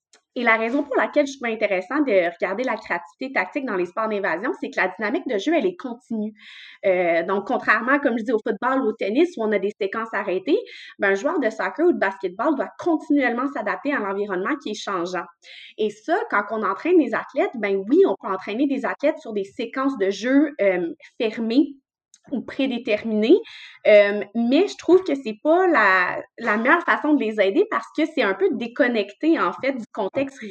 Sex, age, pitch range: female, 20-39, 205-290 Hz